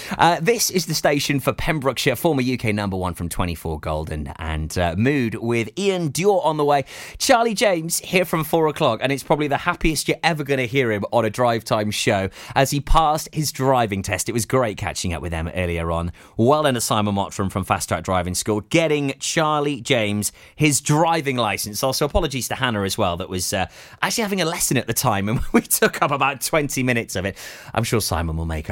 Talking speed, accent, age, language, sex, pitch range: 225 wpm, British, 30-49, English, male, 105-160 Hz